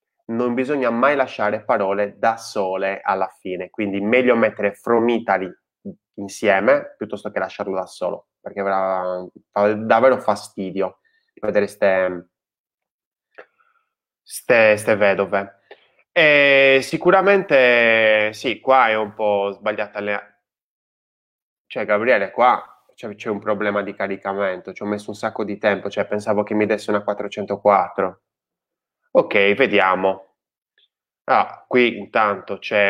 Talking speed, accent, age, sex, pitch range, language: 120 wpm, native, 20-39, male, 100-115 Hz, Italian